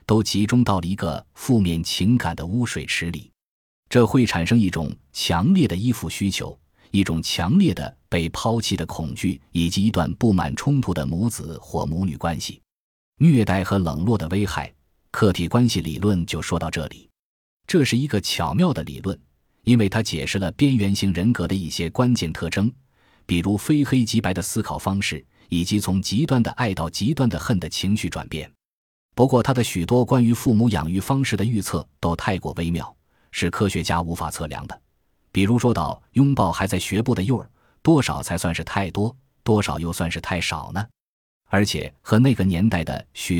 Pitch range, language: 85-120 Hz, Chinese